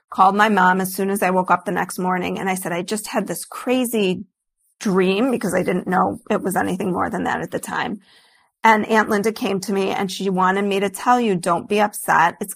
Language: English